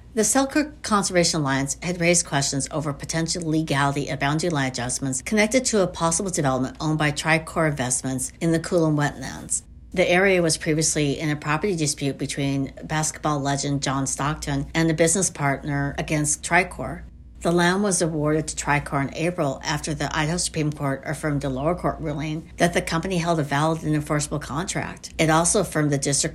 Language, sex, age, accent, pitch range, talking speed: English, female, 60-79, American, 140-165 Hz, 180 wpm